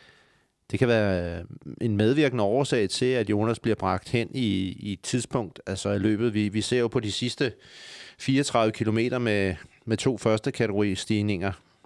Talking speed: 165 wpm